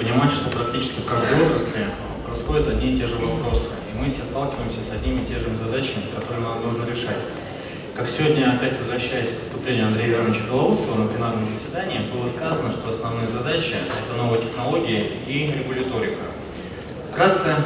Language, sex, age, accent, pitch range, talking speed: Russian, male, 20-39, native, 115-135 Hz, 165 wpm